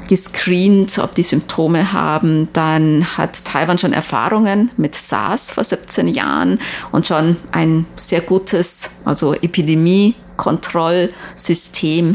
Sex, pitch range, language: female, 155-185 Hz, German